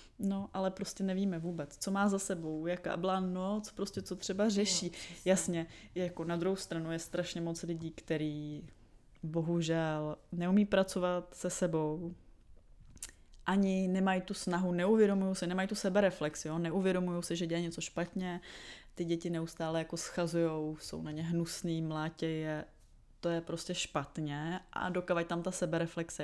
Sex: female